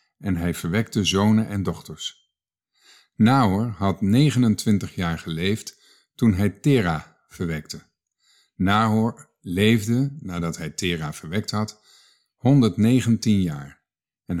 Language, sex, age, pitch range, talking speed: Dutch, male, 50-69, 90-115 Hz, 105 wpm